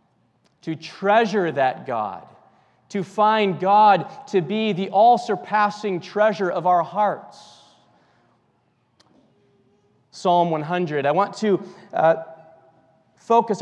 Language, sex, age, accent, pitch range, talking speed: English, male, 40-59, American, 160-200 Hz, 95 wpm